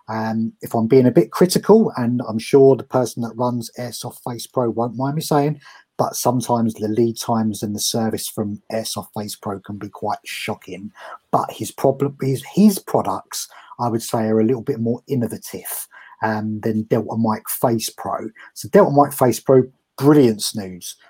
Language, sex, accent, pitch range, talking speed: English, male, British, 110-135 Hz, 190 wpm